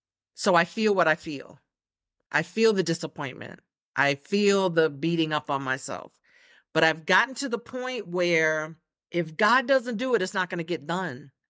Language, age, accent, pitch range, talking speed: English, 50-69, American, 150-205 Hz, 175 wpm